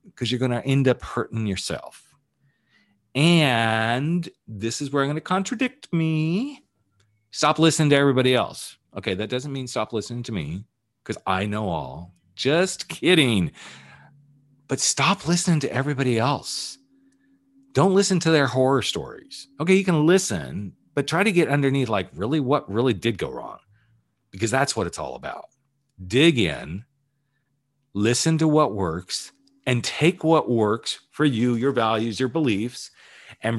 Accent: American